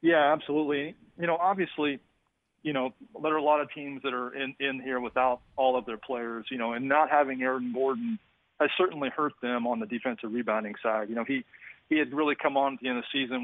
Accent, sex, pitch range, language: American, male, 125-140 Hz, English